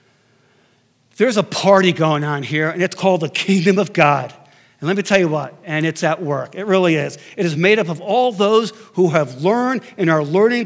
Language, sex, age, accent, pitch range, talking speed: English, male, 60-79, American, 155-220 Hz, 220 wpm